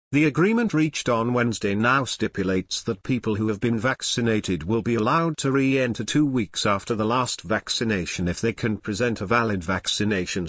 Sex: male